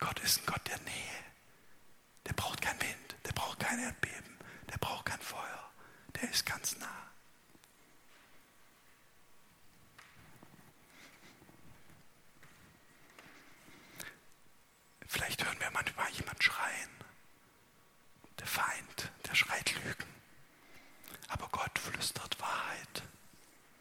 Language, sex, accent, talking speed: German, male, German, 95 wpm